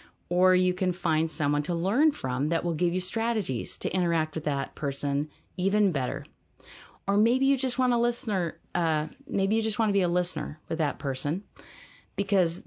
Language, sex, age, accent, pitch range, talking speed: English, female, 40-59, American, 150-200 Hz, 160 wpm